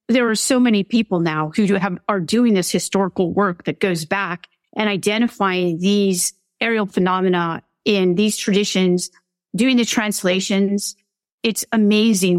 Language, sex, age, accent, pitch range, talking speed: English, female, 40-59, American, 185-225 Hz, 140 wpm